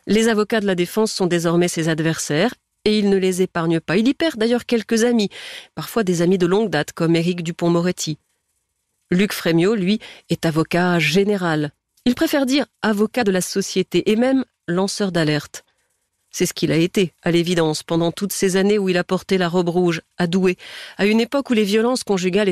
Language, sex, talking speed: French, female, 200 wpm